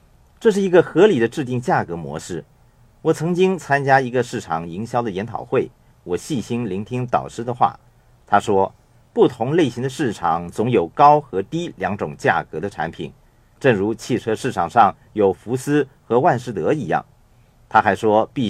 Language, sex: Chinese, male